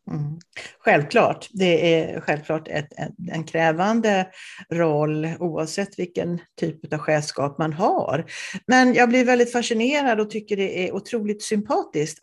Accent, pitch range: Swedish, 165-240 Hz